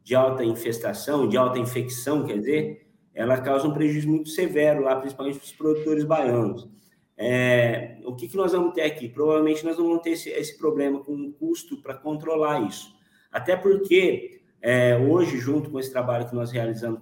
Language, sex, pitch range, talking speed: Portuguese, male, 115-155 Hz, 185 wpm